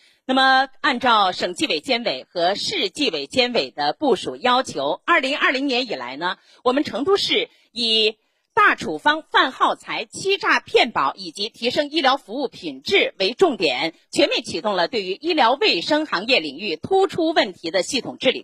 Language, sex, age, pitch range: Chinese, female, 30-49, 250-360 Hz